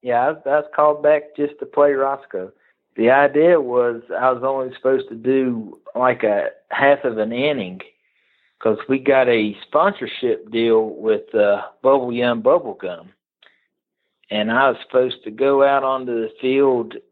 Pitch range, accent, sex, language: 120-140 Hz, American, male, English